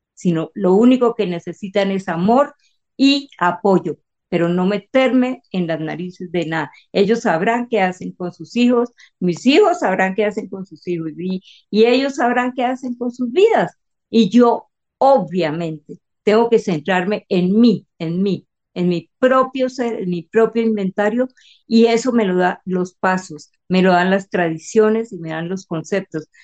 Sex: female